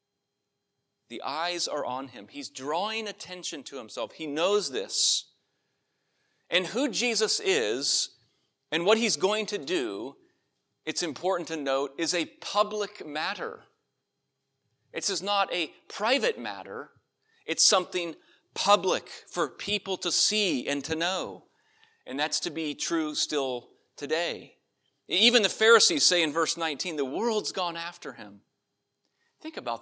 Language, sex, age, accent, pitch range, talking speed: English, male, 40-59, American, 160-270 Hz, 135 wpm